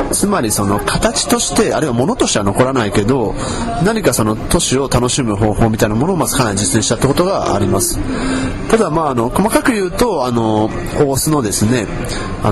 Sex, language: male, Japanese